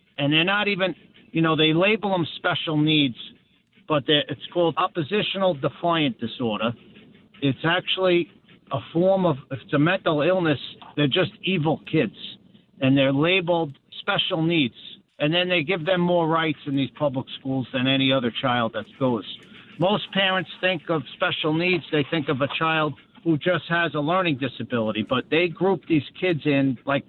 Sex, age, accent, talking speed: male, 50-69, American, 170 wpm